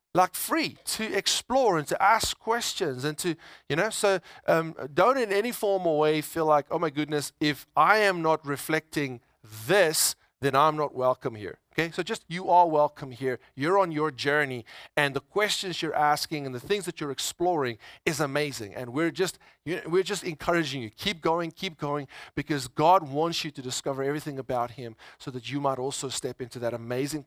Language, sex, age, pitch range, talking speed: English, male, 40-59, 130-180 Hz, 195 wpm